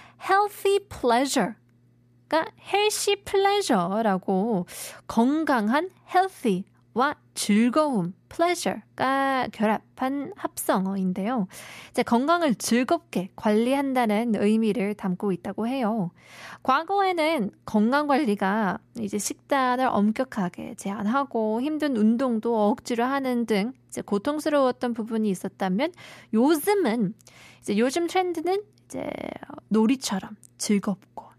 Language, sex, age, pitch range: Korean, female, 20-39, 210-295 Hz